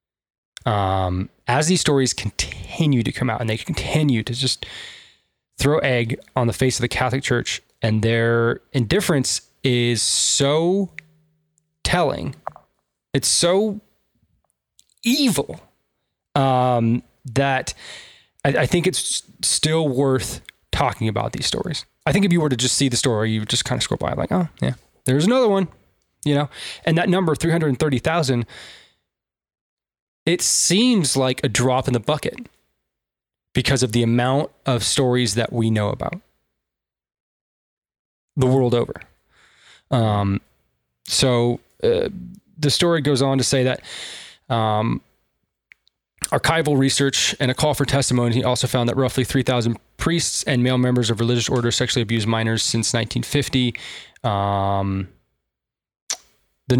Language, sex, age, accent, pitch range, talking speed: English, male, 20-39, American, 115-145 Hz, 140 wpm